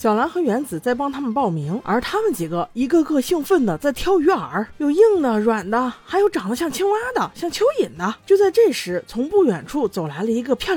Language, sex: Chinese, female